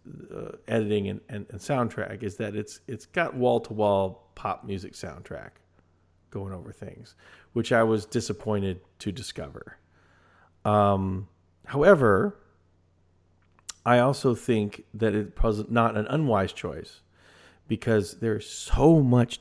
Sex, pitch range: male, 95-115 Hz